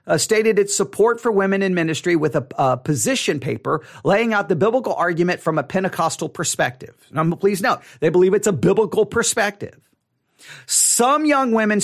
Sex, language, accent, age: male, English, American, 40-59